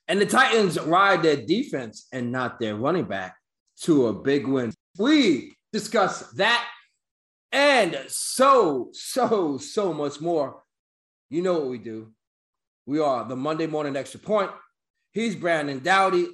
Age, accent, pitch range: 30-49, American, 140-200 Hz